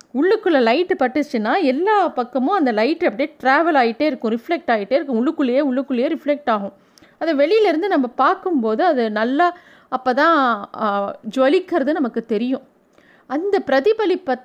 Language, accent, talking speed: Tamil, native, 135 wpm